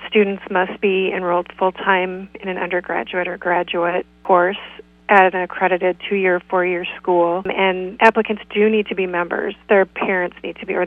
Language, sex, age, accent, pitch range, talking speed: English, female, 30-49, American, 175-195 Hz, 165 wpm